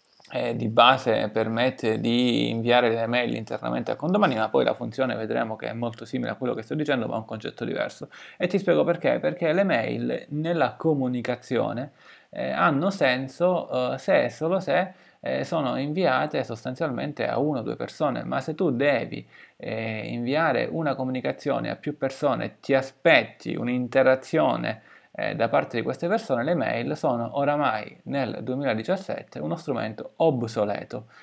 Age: 20-39